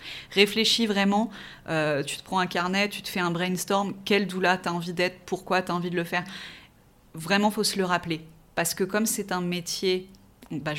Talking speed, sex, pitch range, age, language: 205 wpm, female, 170-200 Hz, 20-39, French